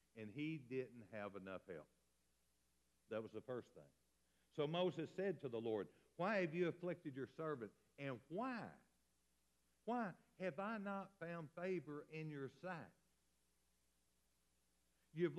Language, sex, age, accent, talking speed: English, male, 60-79, American, 135 wpm